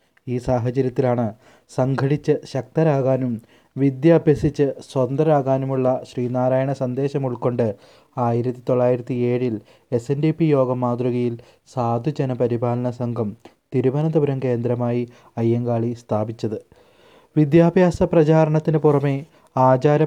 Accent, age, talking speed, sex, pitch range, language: native, 20-39, 85 wpm, male, 120-140 Hz, Malayalam